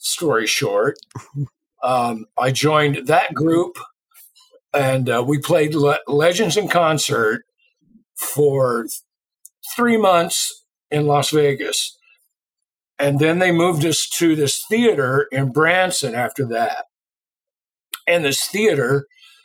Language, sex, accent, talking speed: English, male, American, 110 wpm